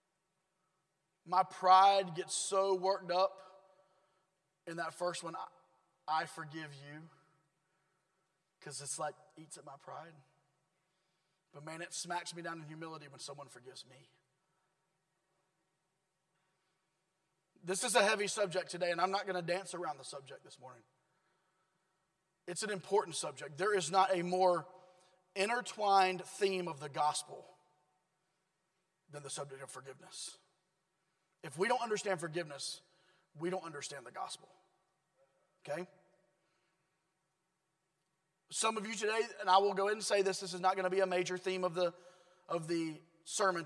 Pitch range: 175-190 Hz